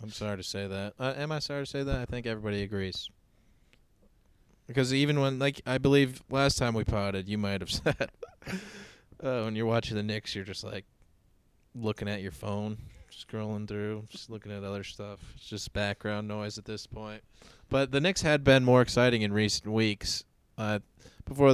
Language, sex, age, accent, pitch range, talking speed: English, male, 20-39, American, 100-125 Hz, 190 wpm